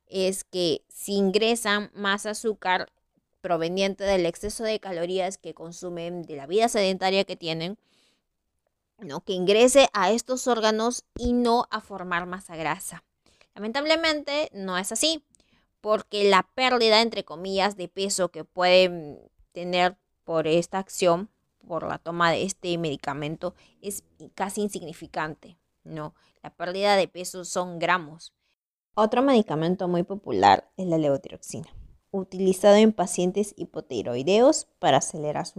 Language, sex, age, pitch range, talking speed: Spanish, female, 20-39, 170-210 Hz, 130 wpm